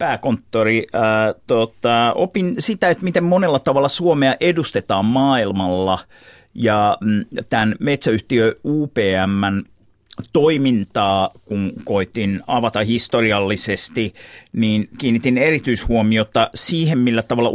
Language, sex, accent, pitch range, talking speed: Finnish, male, native, 110-135 Hz, 90 wpm